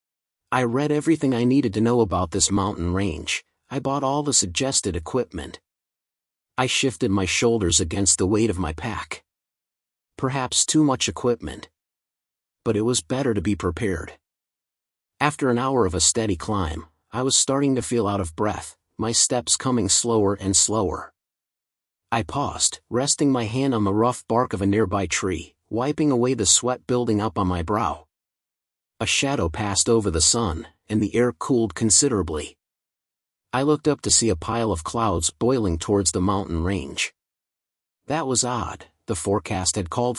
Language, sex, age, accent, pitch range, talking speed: English, male, 40-59, American, 95-125 Hz, 170 wpm